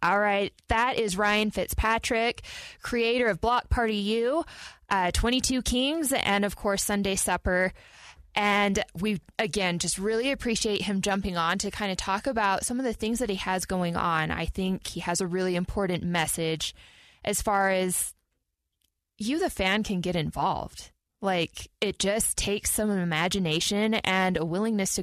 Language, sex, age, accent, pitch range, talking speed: English, female, 20-39, American, 180-220 Hz, 165 wpm